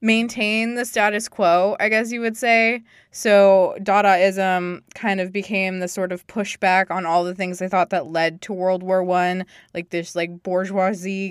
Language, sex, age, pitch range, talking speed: English, female, 20-39, 175-200 Hz, 180 wpm